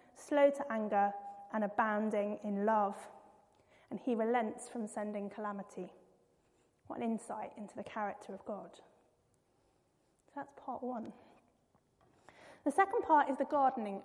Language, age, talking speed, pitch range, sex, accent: English, 30-49, 130 wpm, 215-280 Hz, female, British